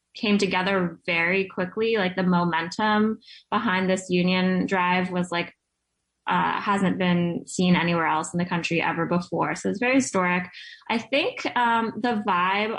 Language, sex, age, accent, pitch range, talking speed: English, female, 10-29, American, 185-215 Hz, 155 wpm